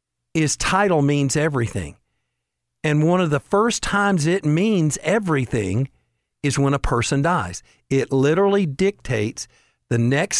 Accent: American